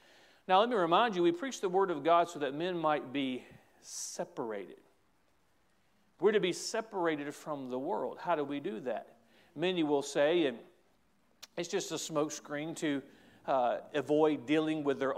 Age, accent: 50-69, American